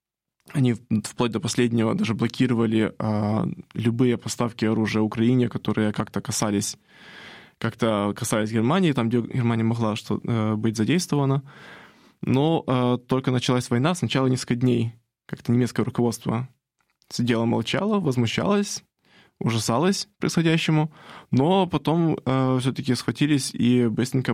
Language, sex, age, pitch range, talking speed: German, male, 20-39, 115-130 Hz, 105 wpm